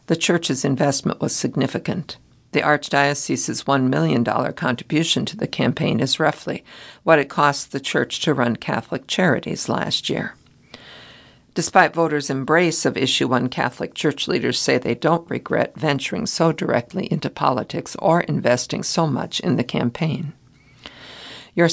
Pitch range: 135-165 Hz